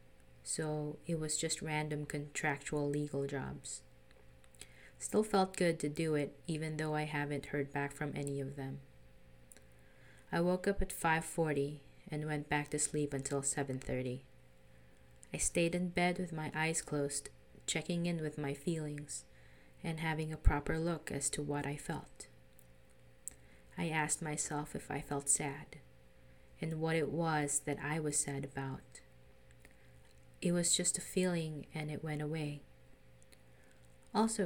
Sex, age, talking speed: female, 20-39, 150 wpm